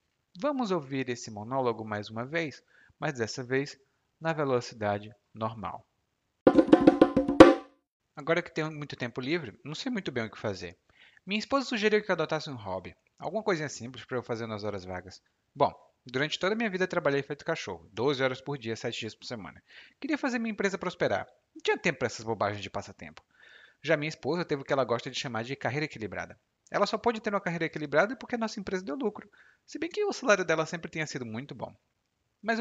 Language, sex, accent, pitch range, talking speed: Portuguese, male, Brazilian, 115-185 Hz, 205 wpm